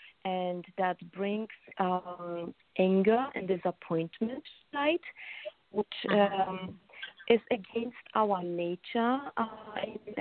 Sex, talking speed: female, 90 wpm